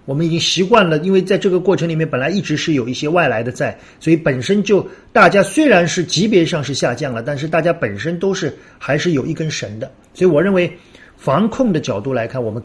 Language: Chinese